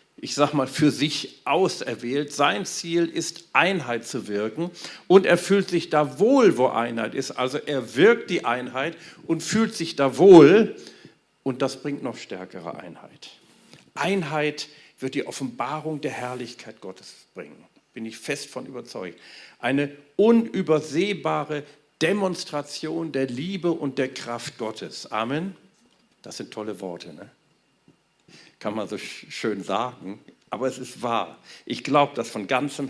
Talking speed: 145 wpm